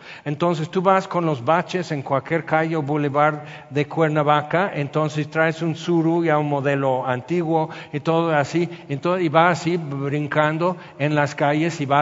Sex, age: male, 60-79